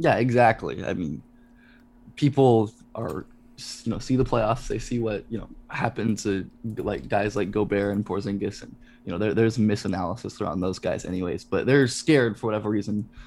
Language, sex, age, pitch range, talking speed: English, male, 20-39, 105-130 Hz, 180 wpm